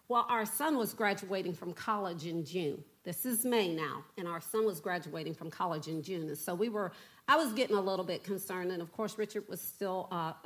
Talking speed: 230 wpm